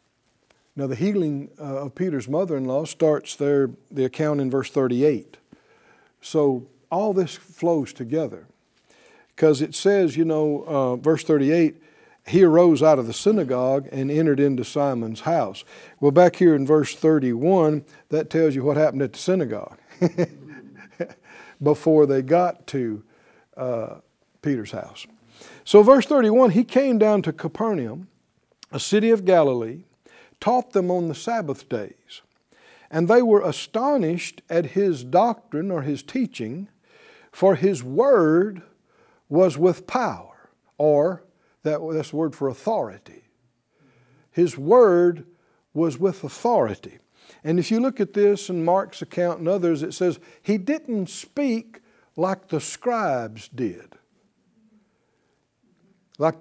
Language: English